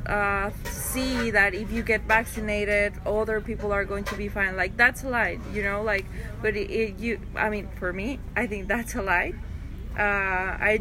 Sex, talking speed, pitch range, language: female, 200 wpm, 200-225 Hz, English